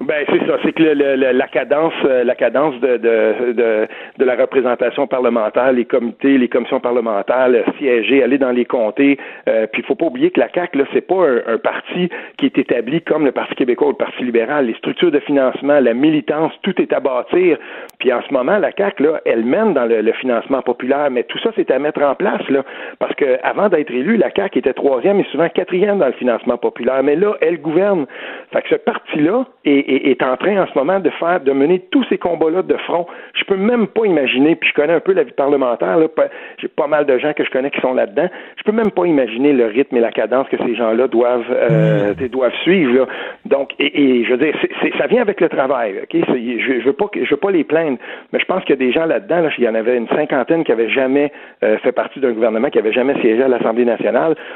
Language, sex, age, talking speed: French, male, 60-79, 245 wpm